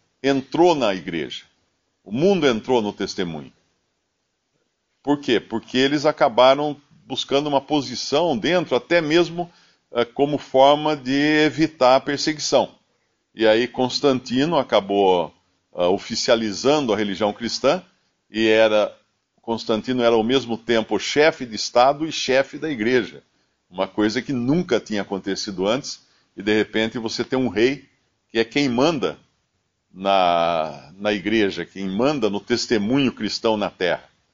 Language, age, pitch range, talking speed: Portuguese, 50-69, 105-145 Hz, 130 wpm